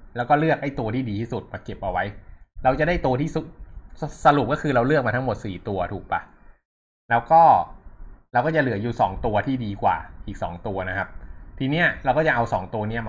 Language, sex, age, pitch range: Thai, male, 20-39, 95-130 Hz